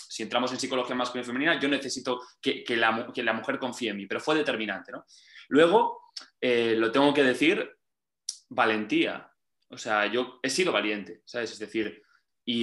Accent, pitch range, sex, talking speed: Spanish, 115-150 Hz, male, 185 wpm